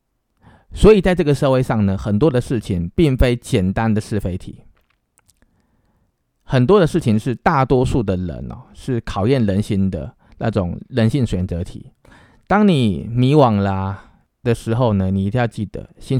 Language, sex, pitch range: Chinese, male, 95-125 Hz